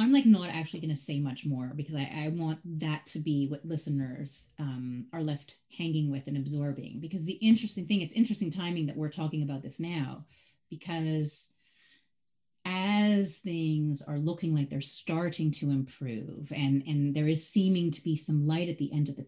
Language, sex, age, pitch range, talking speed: English, female, 30-49, 150-205 Hz, 195 wpm